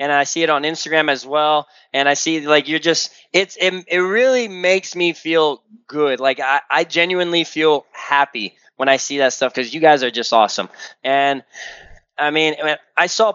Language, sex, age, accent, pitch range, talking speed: English, male, 20-39, American, 140-170 Hz, 190 wpm